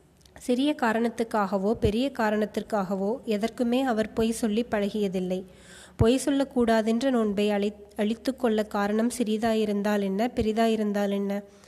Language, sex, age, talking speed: Tamil, female, 20-39, 105 wpm